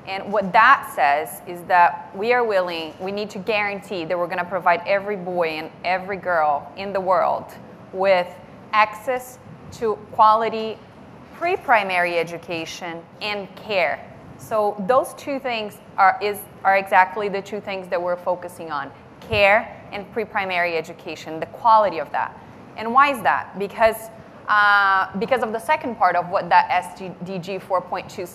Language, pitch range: English, 185-220 Hz